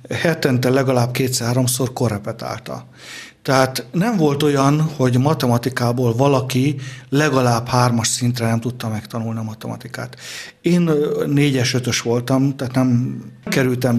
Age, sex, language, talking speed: 50-69, male, Hungarian, 110 wpm